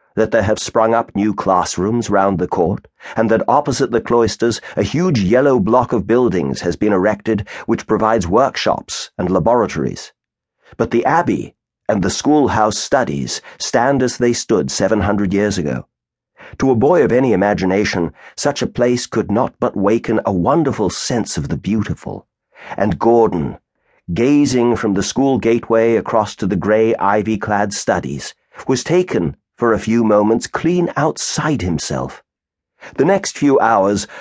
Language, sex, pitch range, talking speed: English, male, 100-125 Hz, 155 wpm